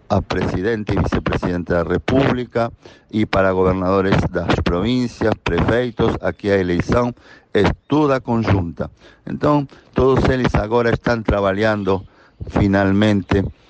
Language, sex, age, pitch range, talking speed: Portuguese, male, 50-69, 95-115 Hz, 110 wpm